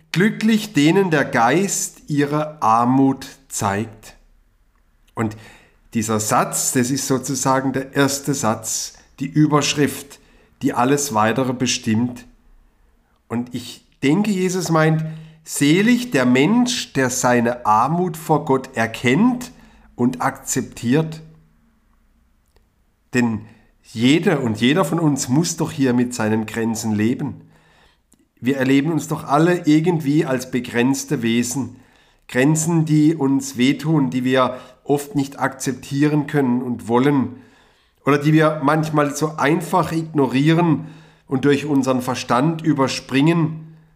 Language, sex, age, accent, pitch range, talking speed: German, male, 50-69, German, 120-150 Hz, 115 wpm